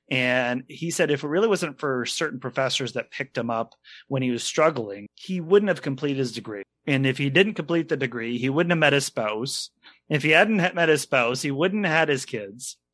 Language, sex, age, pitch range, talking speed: English, male, 30-49, 130-185 Hz, 225 wpm